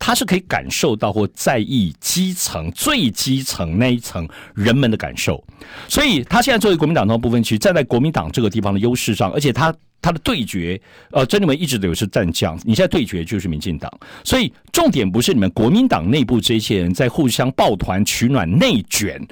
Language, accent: Chinese, native